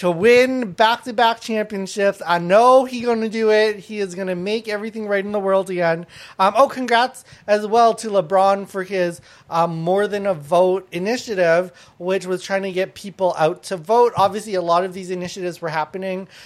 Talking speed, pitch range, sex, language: 195 wpm, 160-205 Hz, male, English